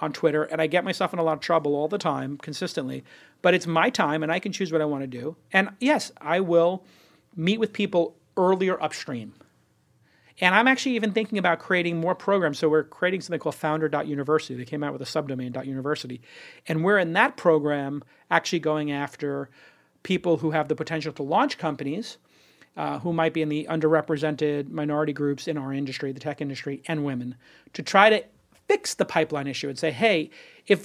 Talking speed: 200 wpm